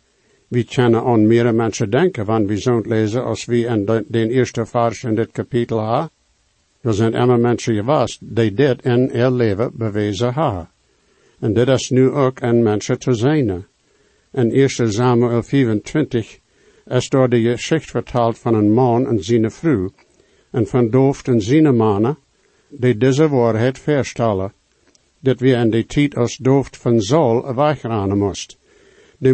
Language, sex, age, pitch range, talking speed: English, male, 60-79, 115-135 Hz, 165 wpm